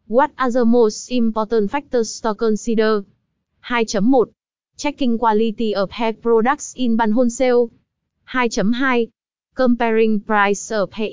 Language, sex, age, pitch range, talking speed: Vietnamese, female, 20-39, 215-245 Hz, 120 wpm